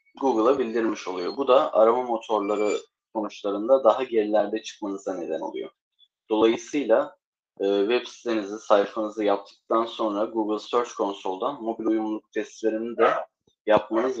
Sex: male